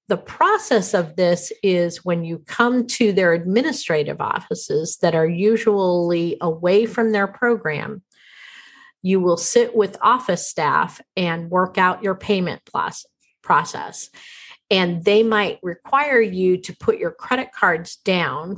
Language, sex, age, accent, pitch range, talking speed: English, female, 40-59, American, 170-220 Hz, 135 wpm